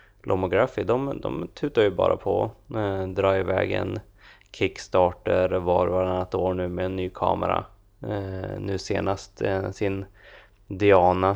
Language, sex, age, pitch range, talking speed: Swedish, male, 20-39, 90-100 Hz, 135 wpm